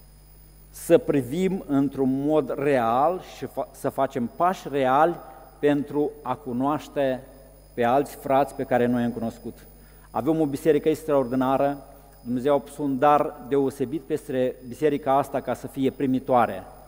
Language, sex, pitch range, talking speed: Romanian, male, 130-155 Hz, 135 wpm